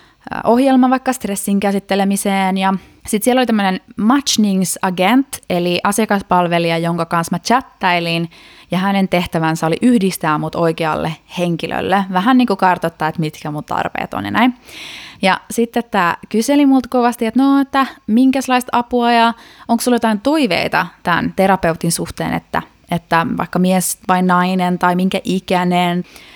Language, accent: Finnish, native